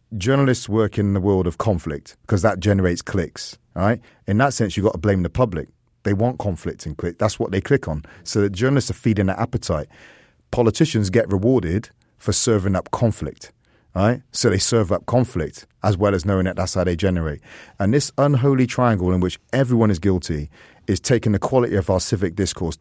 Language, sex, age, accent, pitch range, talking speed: English, male, 30-49, British, 90-115 Hz, 205 wpm